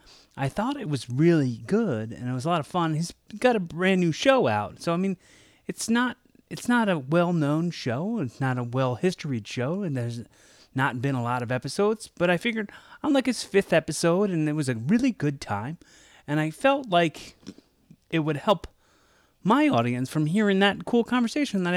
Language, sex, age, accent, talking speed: English, male, 30-49, American, 200 wpm